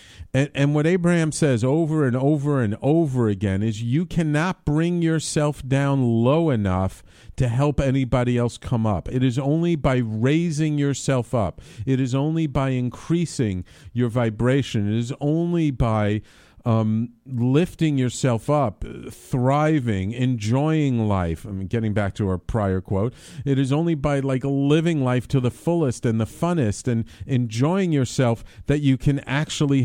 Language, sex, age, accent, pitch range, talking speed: English, male, 50-69, American, 110-150 Hz, 155 wpm